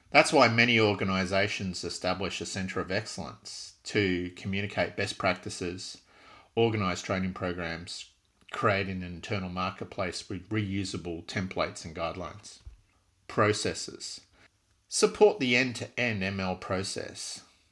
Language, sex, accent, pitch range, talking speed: English, male, Australian, 90-105 Hz, 105 wpm